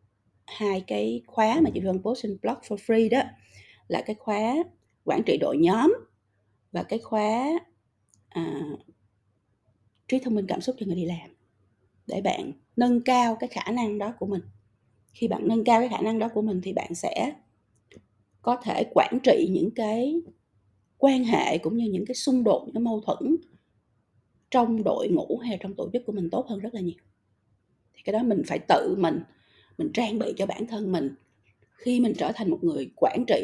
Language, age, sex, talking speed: Vietnamese, 20-39, female, 195 wpm